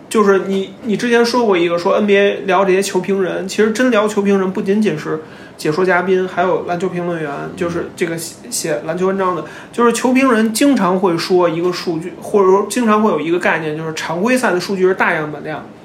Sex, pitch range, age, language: male, 180-235 Hz, 30-49, Chinese